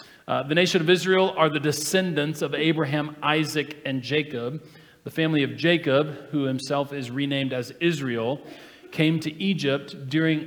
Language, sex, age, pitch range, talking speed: English, male, 40-59, 130-160 Hz, 155 wpm